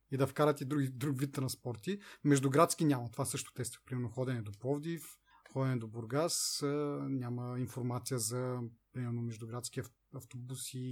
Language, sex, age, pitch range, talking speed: Bulgarian, male, 30-49, 125-150 Hz, 145 wpm